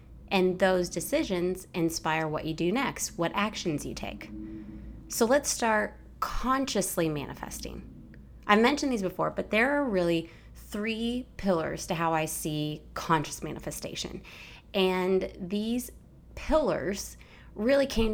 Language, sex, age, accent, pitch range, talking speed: English, female, 20-39, American, 160-210 Hz, 125 wpm